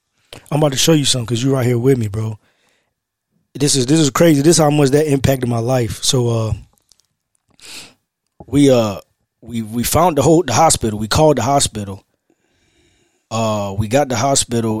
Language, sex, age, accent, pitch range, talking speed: English, male, 20-39, American, 115-145 Hz, 185 wpm